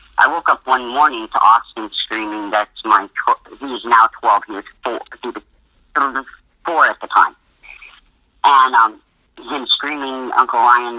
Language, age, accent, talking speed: English, 50-69, American, 140 wpm